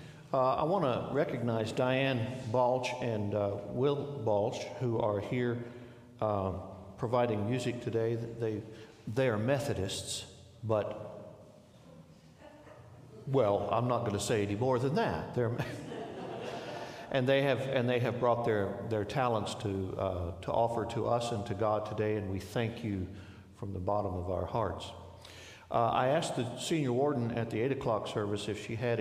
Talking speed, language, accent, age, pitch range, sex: 160 wpm, English, American, 60-79, 100-125 Hz, male